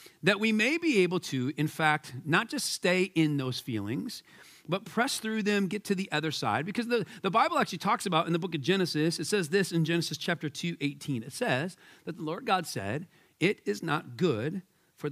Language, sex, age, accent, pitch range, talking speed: English, male, 40-59, American, 145-205 Hz, 215 wpm